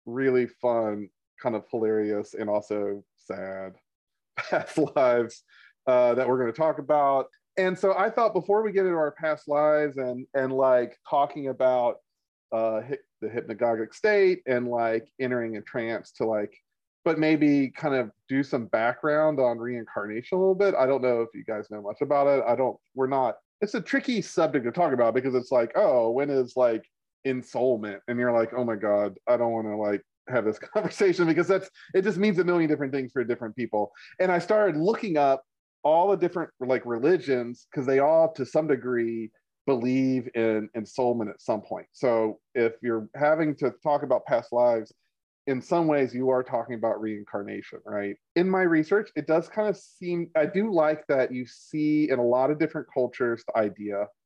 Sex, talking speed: male, 195 wpm